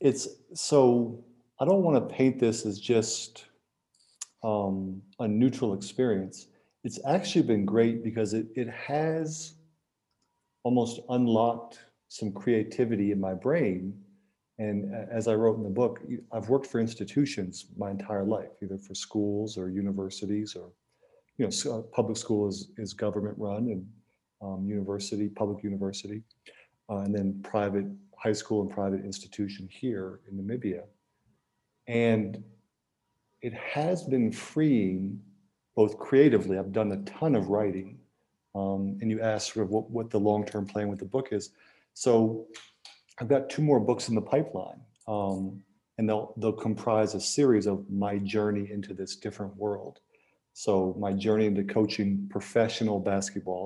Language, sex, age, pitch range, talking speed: English, male, 40-59, 100-115 Hz, 150 wpm